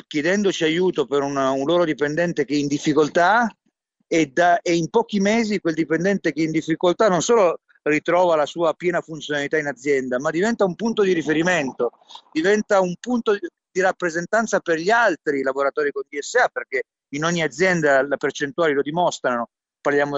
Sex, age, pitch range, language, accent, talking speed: male, 40-59, 140-175 Hz, Italian, native, 165 wpm